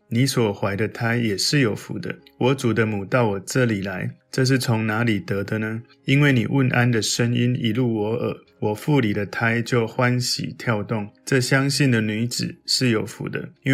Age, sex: 20-39, male